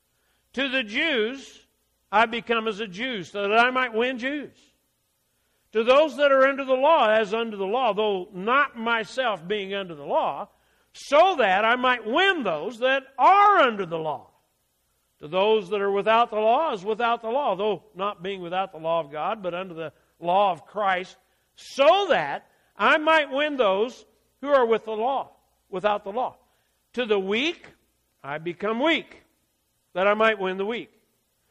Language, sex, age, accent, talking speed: English, male, 60-79, American, 180 wpm